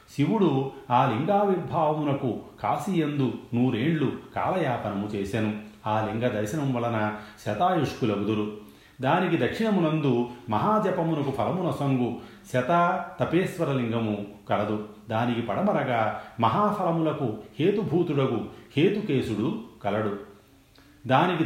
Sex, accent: male, native